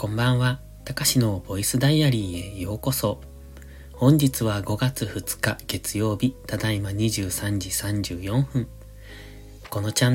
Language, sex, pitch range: Japanese, male, 100-125 Hz